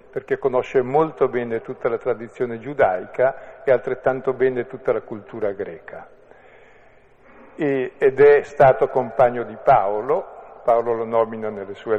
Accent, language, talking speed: native, Italian, 135 wpm